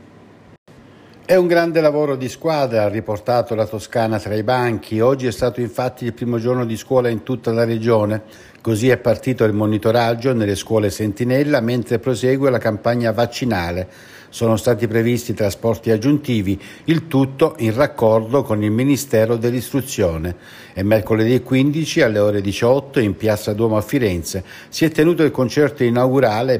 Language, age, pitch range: Italian, 60-79, 105-125 Hz